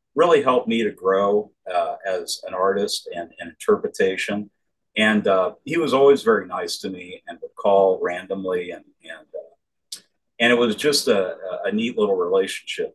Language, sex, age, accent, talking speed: English, male, 50-69, American, 170 wpm